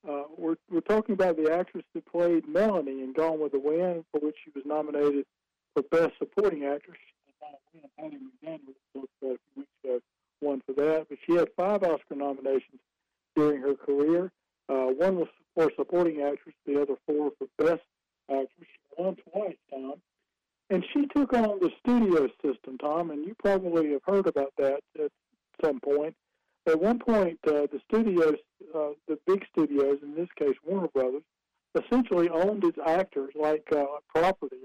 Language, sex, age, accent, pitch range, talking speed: English, male, 50-69, American, 145-190 Hz, 175 wpm